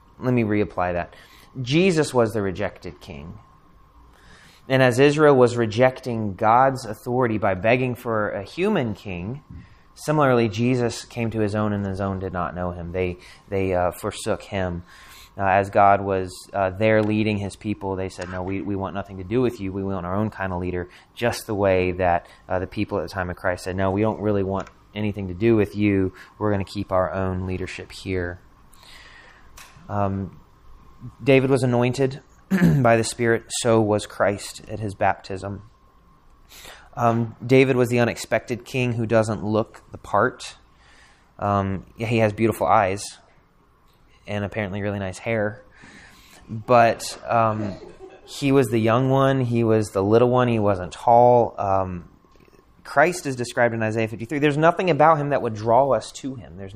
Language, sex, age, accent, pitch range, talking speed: English, male, 30-49, American, 95-120 Hz, 175 wpm